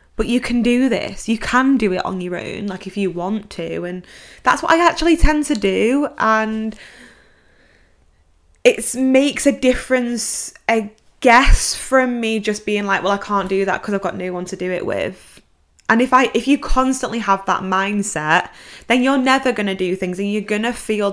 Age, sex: 20-39, female